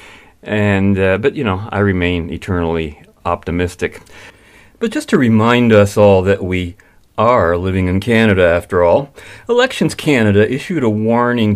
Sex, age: male, 40-59